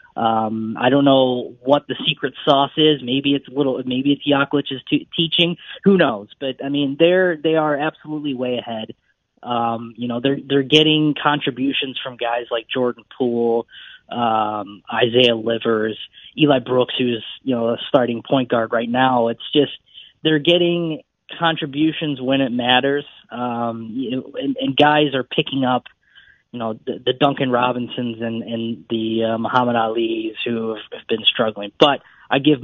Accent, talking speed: American, 165 wpm